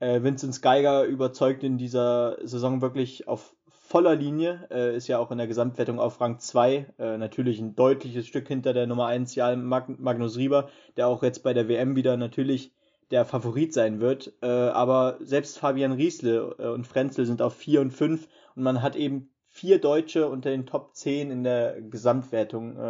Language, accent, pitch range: German, German, 120-135 Hz